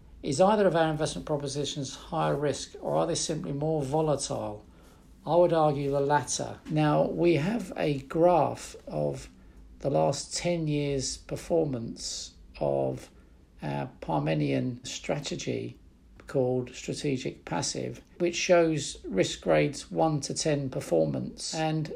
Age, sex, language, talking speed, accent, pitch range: 50-69, male, English, 125 wpm, British, 120-165 Hz